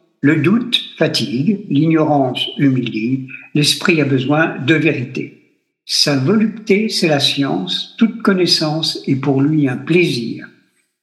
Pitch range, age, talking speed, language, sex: 140-200 Hz, 60-79, 120 wpm, French, male